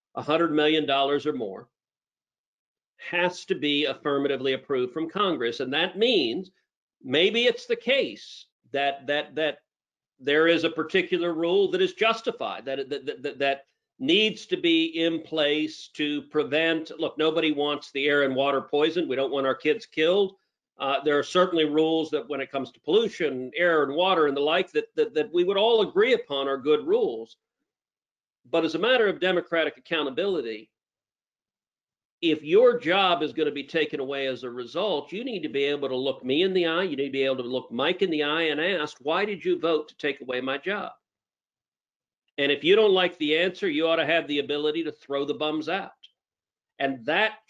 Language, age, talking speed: English, 50-69, 195 wpm